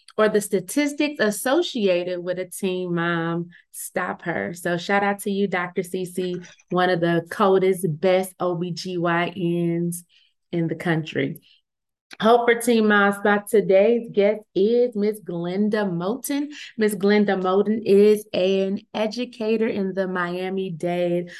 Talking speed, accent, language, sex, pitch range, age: 125 wpm, American, English, female, 180-220 Hz, 20-39